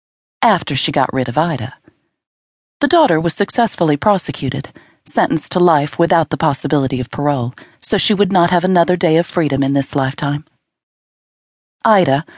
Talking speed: 155 wpm